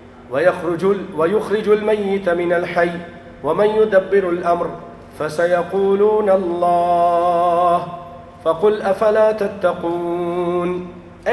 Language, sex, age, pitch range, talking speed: English, male, 50-69, 175-235 Hz, 65 wpm